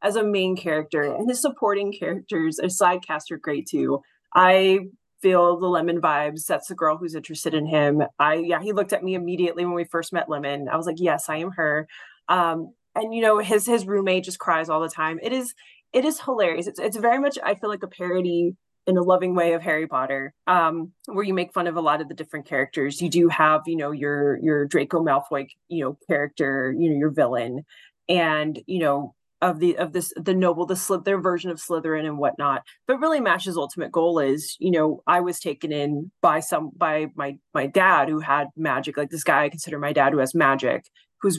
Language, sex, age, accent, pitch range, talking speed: English, female, 20-39, American, 155-195 Hz, 225 wpm